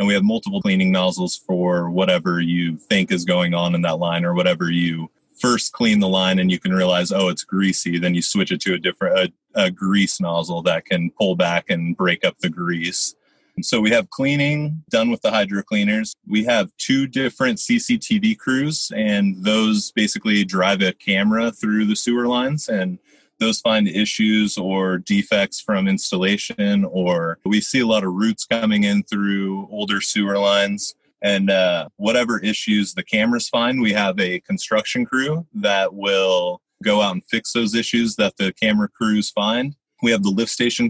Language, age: English, 30-49